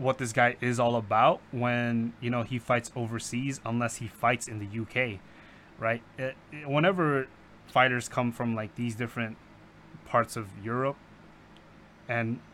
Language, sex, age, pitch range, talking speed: English, male, 20-39, 115-130 Hz, 145 wpm